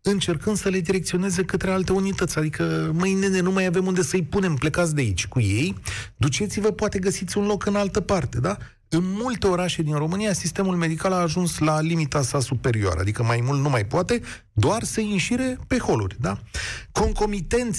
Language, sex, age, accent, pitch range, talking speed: Romanian, male, 40-59, native, 130-190 Hz, 190 wpm